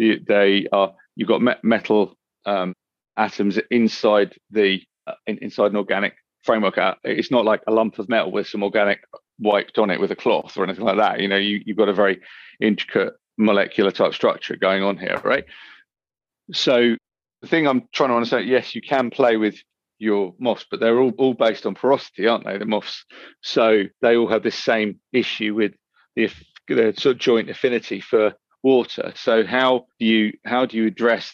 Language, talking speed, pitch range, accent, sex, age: English, 190 wpm, 100-120 Hz, British, male, 40-59